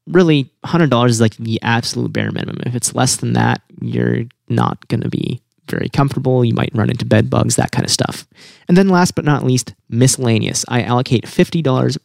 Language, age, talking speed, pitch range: English, 30-49, 205 wpm, 115-150 Hz